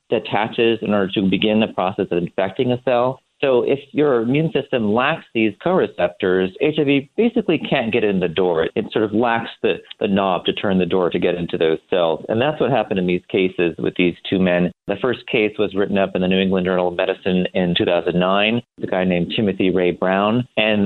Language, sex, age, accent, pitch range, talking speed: English, male, 40-59, American, 95-130 Hz, 215 wpm